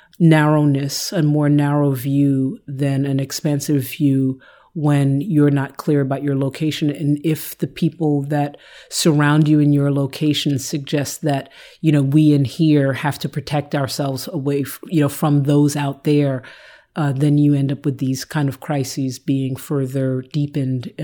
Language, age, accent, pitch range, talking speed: English, 40-59, American, 140-160 Hz, 165 wpm